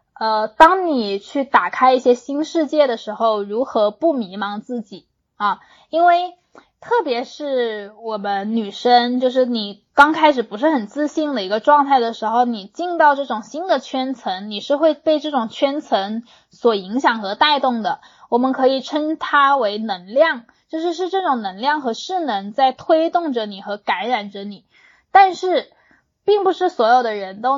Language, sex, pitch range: Chinese, female, 220-290 Hz